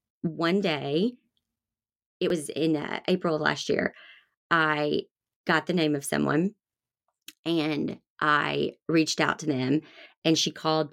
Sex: female